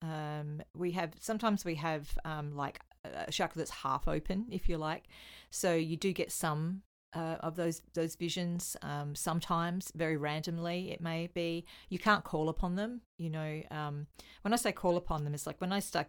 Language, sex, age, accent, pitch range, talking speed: English, female, 40-59, Australian, 145-170 Hz, 195 wpm